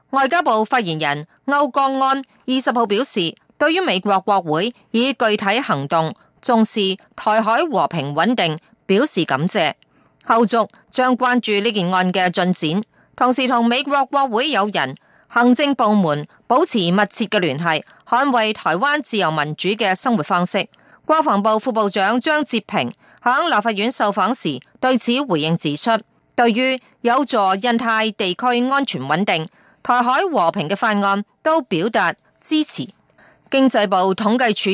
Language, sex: Chinese, female